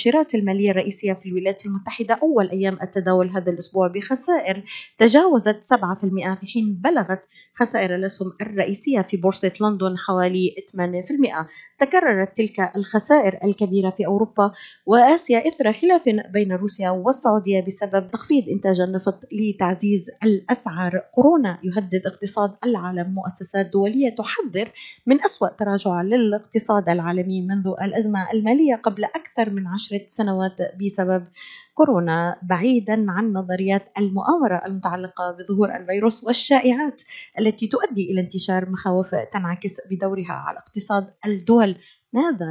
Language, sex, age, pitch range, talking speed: Arabic, female, 30-49, 190-230 Hz, 115 wpm